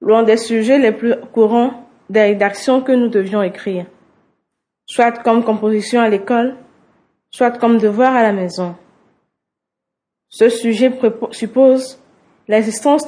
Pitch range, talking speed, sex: 215-250 Hz, 130 wpm, female